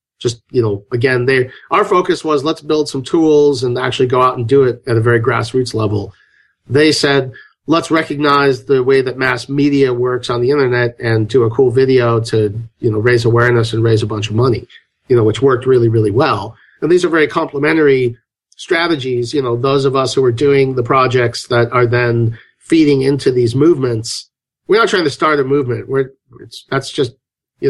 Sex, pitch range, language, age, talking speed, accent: male, 120-150 Hz, English, 40-59, 205 wpm, American